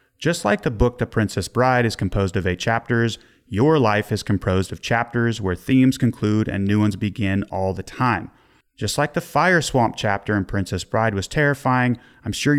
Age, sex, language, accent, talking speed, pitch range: 30-49, male, English, American, 195 wpm, 100-135 Hz